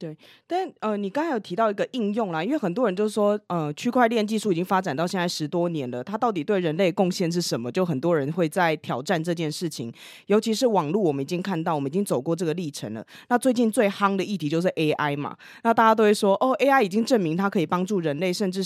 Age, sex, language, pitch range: 20-39, female, Chinese, 160-215 Hz